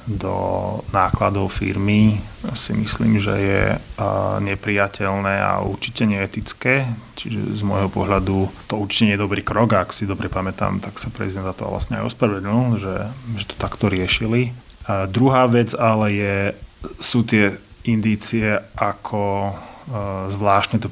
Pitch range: 95-110 Hz